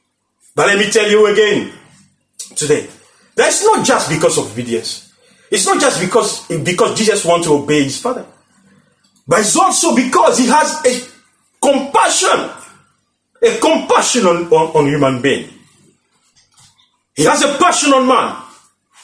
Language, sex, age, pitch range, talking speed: English, male, 40-59, 220-310 Hz, 145 wpm